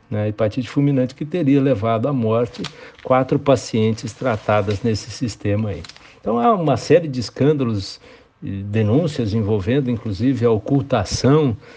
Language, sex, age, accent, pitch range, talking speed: Portuguese, male, 60-79, Brazilian, 105-135 Hz, 140 wpm